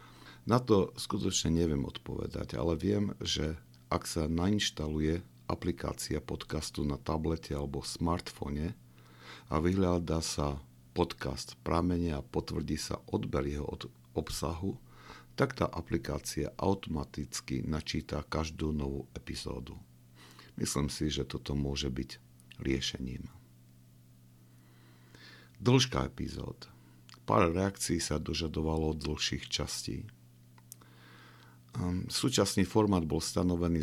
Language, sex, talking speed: Slovak, male, 100 wpm